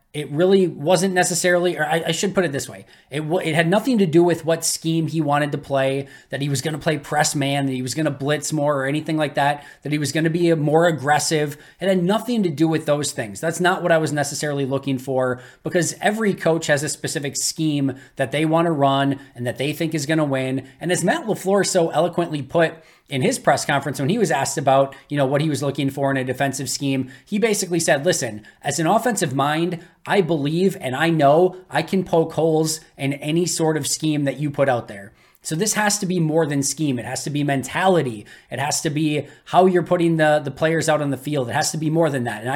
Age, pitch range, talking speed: 20-39, 140-170 Hz, 250 wpm